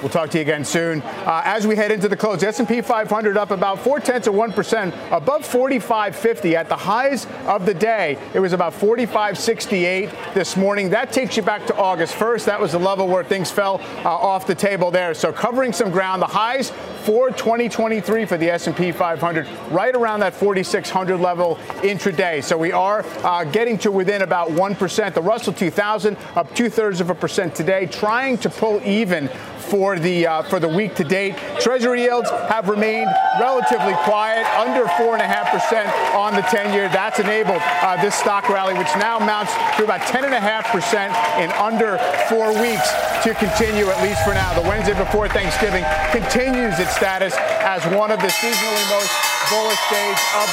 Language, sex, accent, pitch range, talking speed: English, male, American, 190-235 Hz, 185 wpm